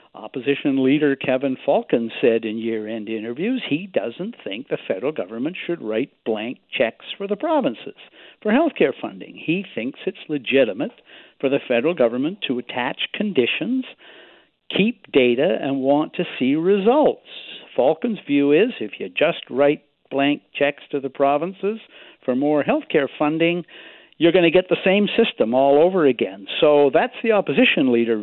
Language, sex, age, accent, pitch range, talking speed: English, male, 60-79, American, 135-195 Hz, 160 wpm